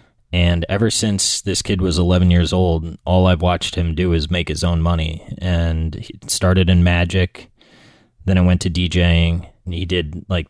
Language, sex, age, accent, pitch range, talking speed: English, male, 30-49, American, 85-95 Hz, 190 wpm